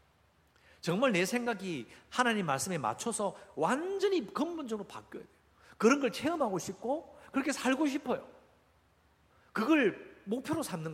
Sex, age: male, 50-69